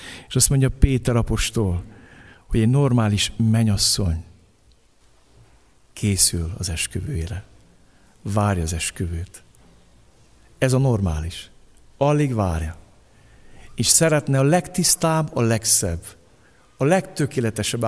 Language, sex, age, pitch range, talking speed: Hungarian, male, 60-79, 95-130 Hz, 95 wpm